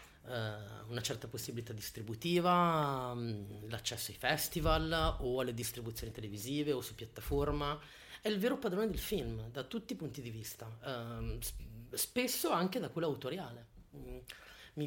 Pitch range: 115-155 Hz